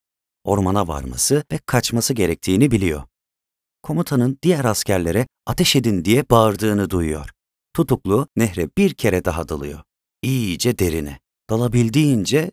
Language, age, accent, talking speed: Turkish, 40-59, native, 110 wpm